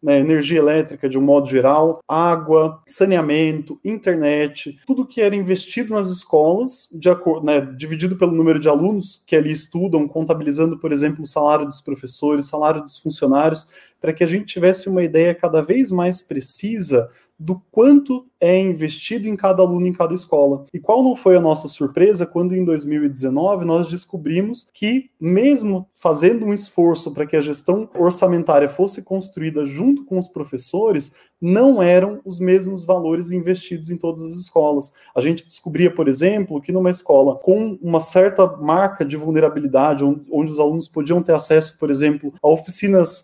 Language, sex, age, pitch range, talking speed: Portuguese, male, 20-39, 150-185 Hz, 160 wpm